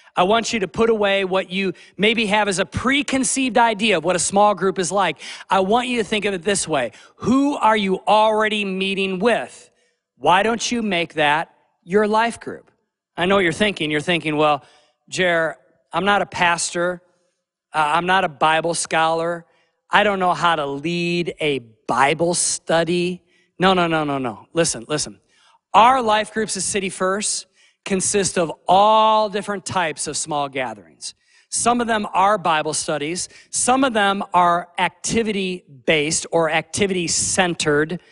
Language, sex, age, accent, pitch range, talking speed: English, male, 40-59, American, 165-215 Hz, 165 wpm